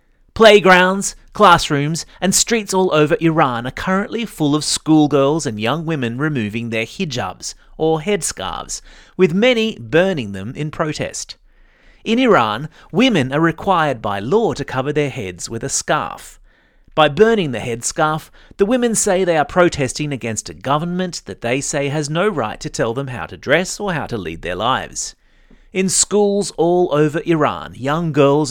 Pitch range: 120-185 Hz